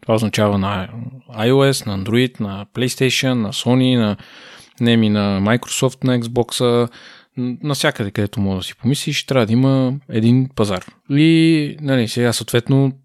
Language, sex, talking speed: Bulgarian, male, 145 wpm